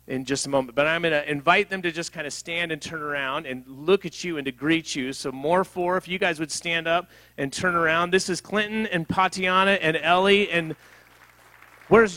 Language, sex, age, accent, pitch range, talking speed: English, male, 40-59, American, 135-170 Hz, 230 wpm